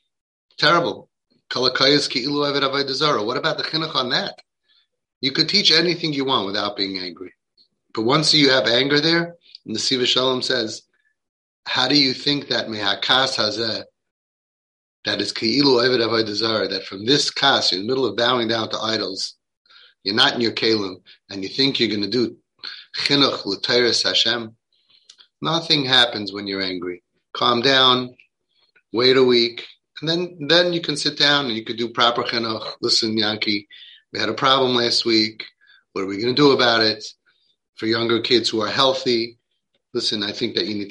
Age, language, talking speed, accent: 30-49, English, 160 wpm, American